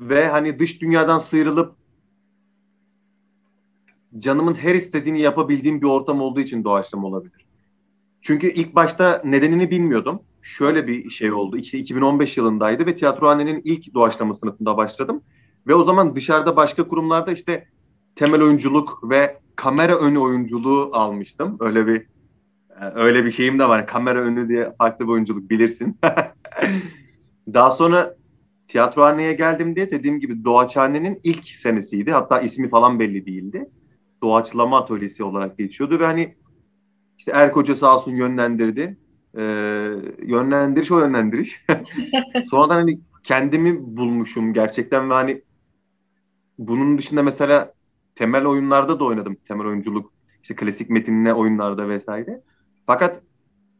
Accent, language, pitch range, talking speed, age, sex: native, Turkish, 115-160 Hz, 125 wpm, 30-49, male